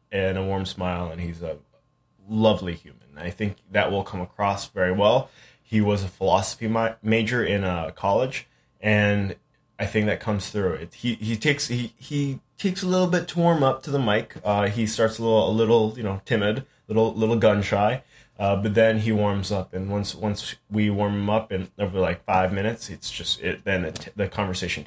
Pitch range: 95-115 Hz